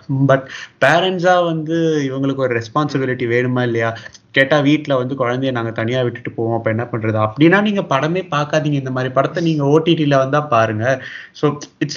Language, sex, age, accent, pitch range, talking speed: Tamil, male, 20-39, native, 130-165 Hz, 165 wpm